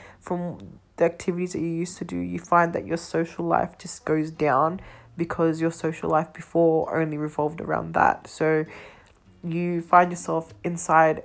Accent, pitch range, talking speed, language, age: Australian, 150-185 Hz, 165 wpm, English, 20-39